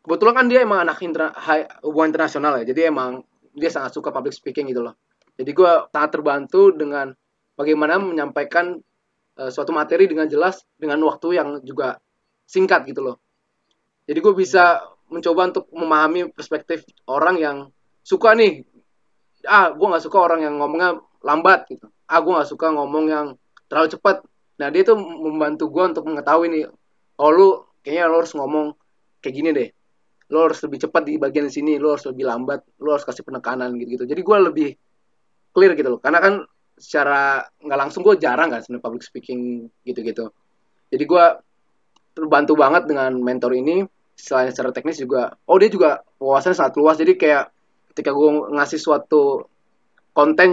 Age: 20-39